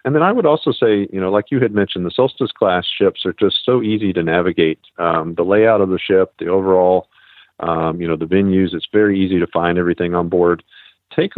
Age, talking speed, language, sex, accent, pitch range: 40-59, 230 wpm, English, male, American, 85-100 Hz